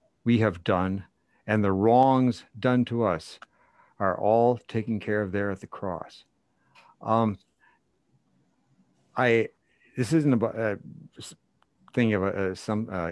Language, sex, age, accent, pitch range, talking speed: English, male, 60-79, American, 90-110 Hz, 140 wpm